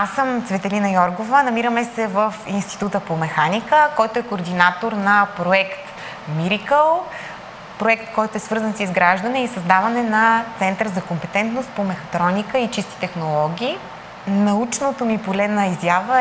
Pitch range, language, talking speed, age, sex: 195-245 Hz, Bulgarian, 135 wpm, 20-39, female